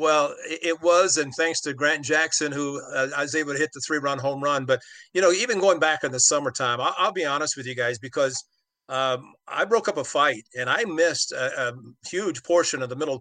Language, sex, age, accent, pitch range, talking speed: English, male, 50-69, American, 130-160 Hz, 235 wpm